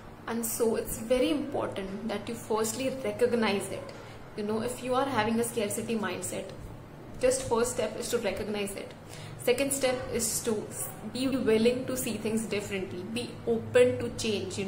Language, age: English, 20-39